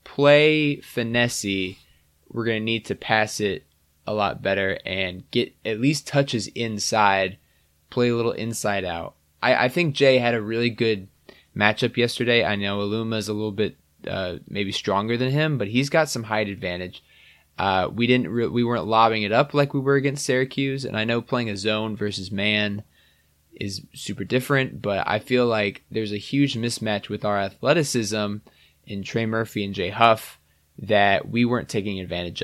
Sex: male